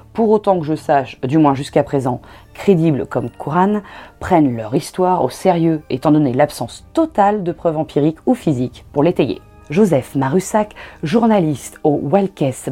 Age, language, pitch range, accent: 30-49, French, 140-190 Hz, French